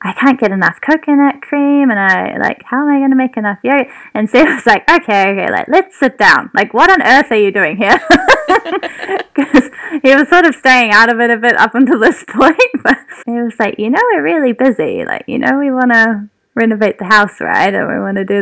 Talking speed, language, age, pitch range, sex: 245 wpm, English, 10-29, 195-275 Hz, female